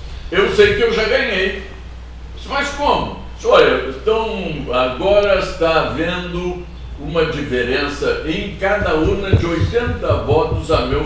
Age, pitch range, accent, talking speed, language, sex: 60-79, 145-200 Hz, Brazilian, 125 wpm, Portuguese, male